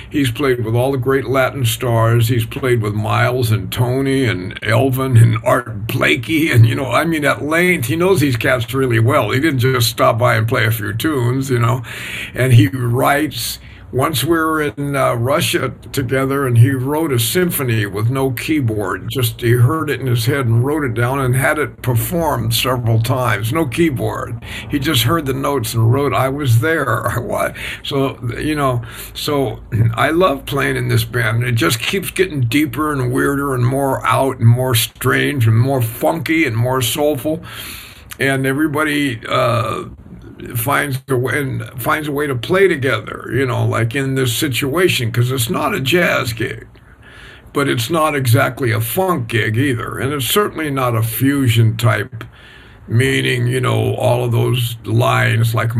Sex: male